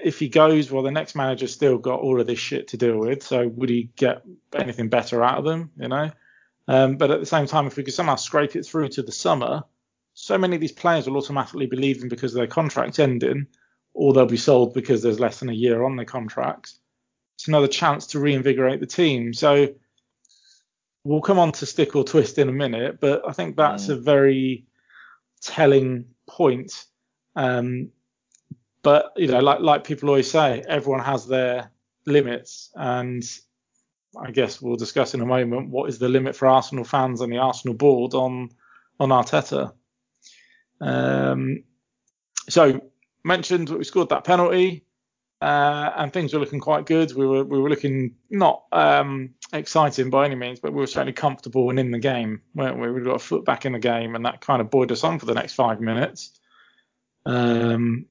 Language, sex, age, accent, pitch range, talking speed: English, male, 20-39, British, 125-145 Hz, 195 wpm